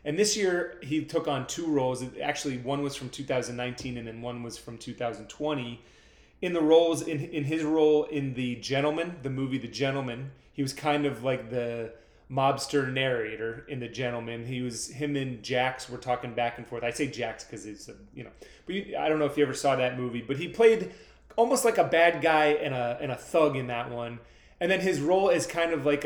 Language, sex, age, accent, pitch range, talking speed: English, male, 30-49, American, 125-155 Hz, 225 wpm